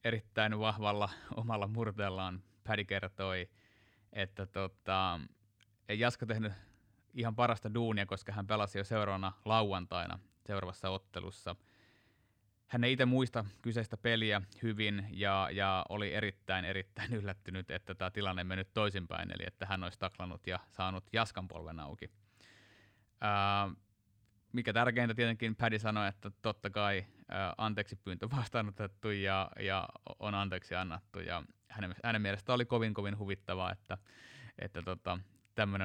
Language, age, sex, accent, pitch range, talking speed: Finnish, 30-49, male, native, 95-115 Hz, 130 wpm